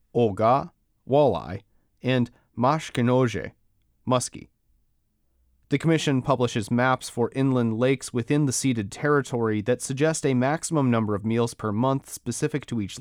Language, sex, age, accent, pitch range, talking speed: English, male, 30-49, American, 110-135 Hz, 130 wpm